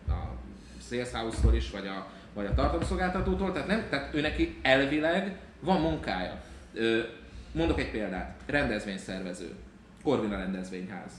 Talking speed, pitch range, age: 105 wpm, 105-155 Hz, 30-49